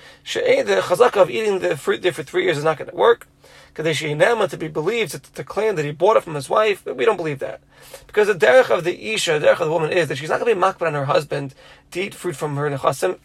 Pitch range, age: 155-210 Hz, 30-49